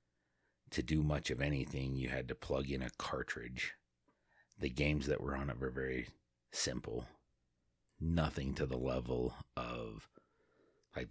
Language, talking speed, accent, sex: English, 145 wpm, American, male